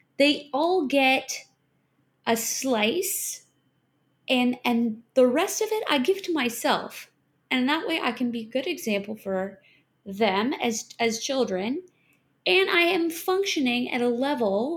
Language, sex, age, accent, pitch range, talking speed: English, female, 20-39, American, 215-310 Hz, 145 wpm